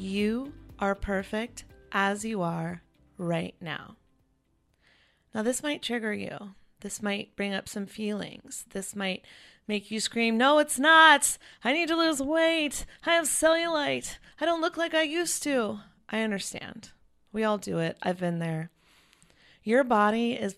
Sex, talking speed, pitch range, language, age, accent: female, 155 wpm, 175-225 Hz, English, 30-49, American